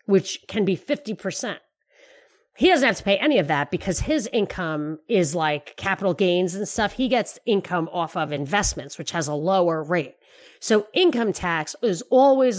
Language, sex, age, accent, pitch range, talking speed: English, female, 40-59, American, 175-230 Hz, 175 wpm